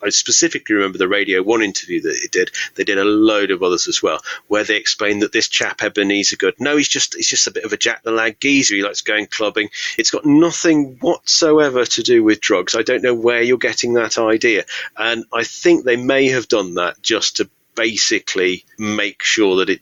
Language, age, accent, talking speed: English, 30-49, British, 220 wpm